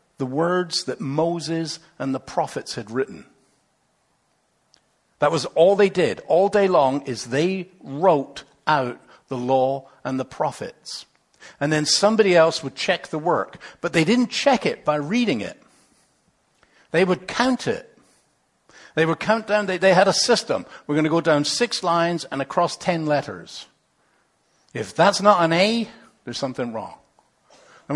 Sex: male